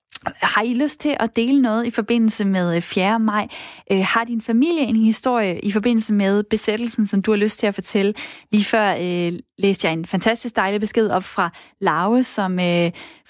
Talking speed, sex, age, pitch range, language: 190 wpm, female, 20-39, 200-240 Hz, Danish